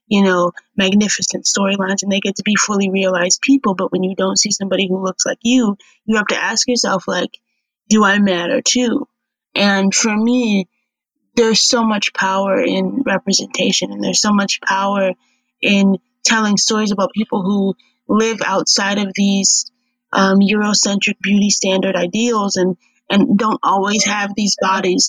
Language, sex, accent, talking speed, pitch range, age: English, female, American, 165 wpm, 195-230 Hz, 20-39